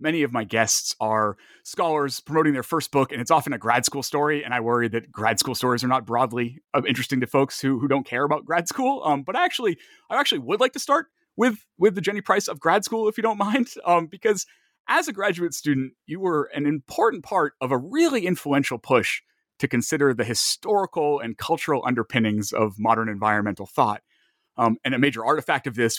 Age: 30-49